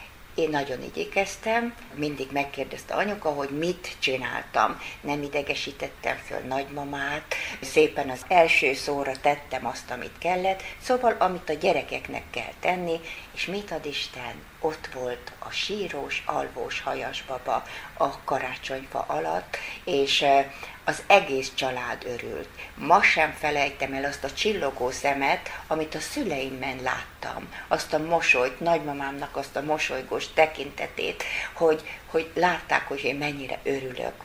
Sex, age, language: female, 60-79, Hungarian